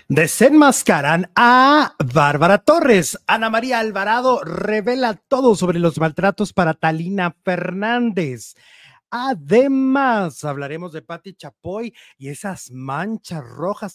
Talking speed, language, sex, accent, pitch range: 105 wpm, Spanish, male, Mexican, 170-235 Hz